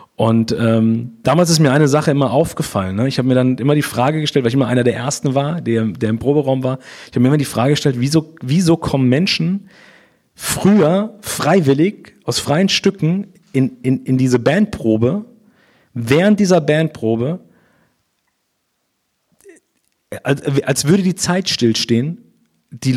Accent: German